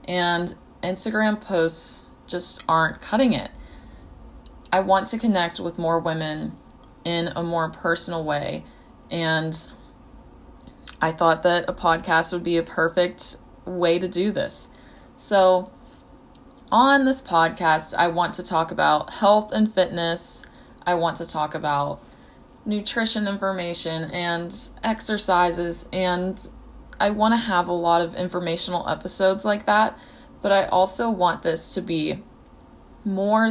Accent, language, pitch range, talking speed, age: American, English, 160-195 Hz, 135 wpm, 20-39